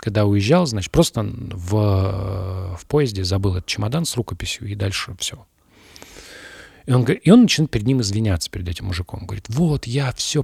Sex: male